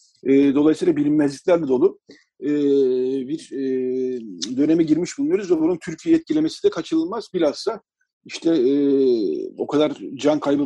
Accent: native